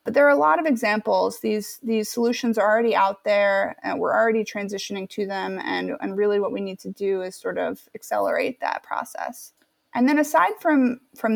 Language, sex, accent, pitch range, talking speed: English, female, American, 205-245 Hz, 205 wpm